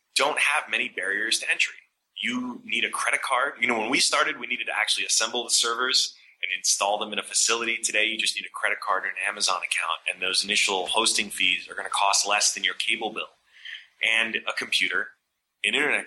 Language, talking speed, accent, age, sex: English, 220 wpm, American, 20-39, male